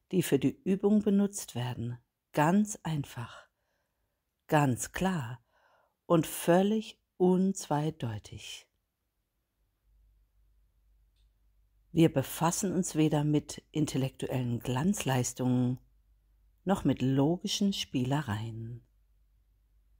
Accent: German